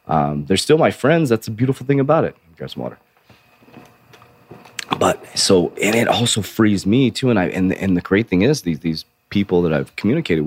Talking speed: 210 wpm